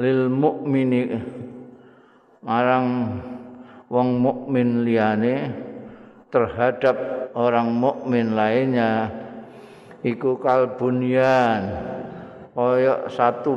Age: 50-69